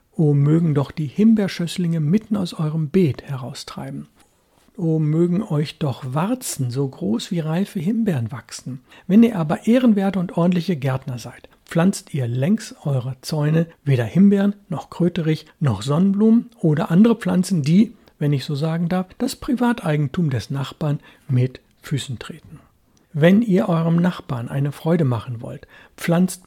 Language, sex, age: German, male, 60-79